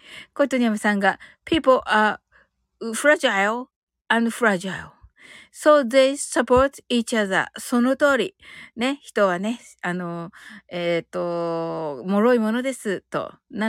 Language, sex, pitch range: Japanese, female, 205-280 Hz